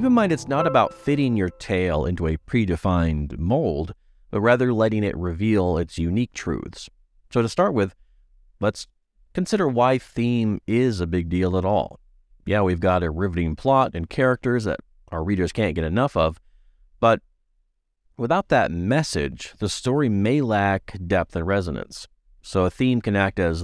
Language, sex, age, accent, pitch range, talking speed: English, male, 40-59, American, 80-105 Hz, 170 wpm